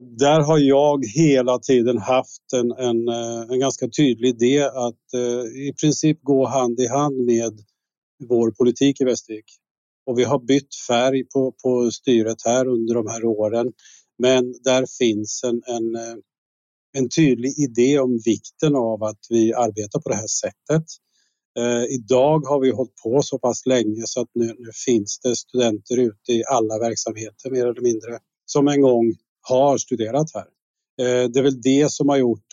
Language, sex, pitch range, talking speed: Swedish, male, 115-135 Hz, 170 wpm